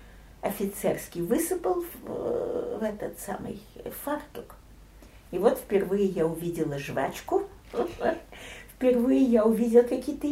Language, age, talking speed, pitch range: Russian, 50-69, 100 wpm, 200-295 Hz